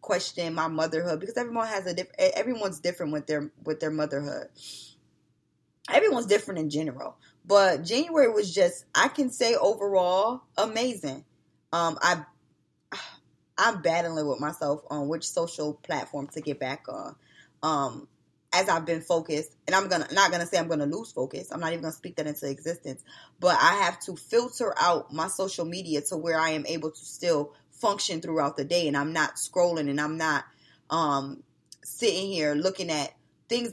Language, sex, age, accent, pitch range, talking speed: English, female, 20-39, American, 150-190 Hz, 175 wpm